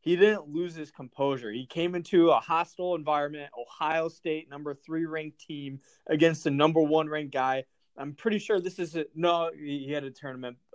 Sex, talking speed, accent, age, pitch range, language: male, 180 wpm, American, 20-39, 145-170 Hz, English